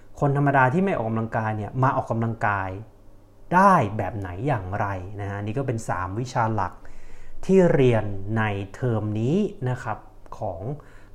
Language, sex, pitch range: Thai, male, 100-130 Hz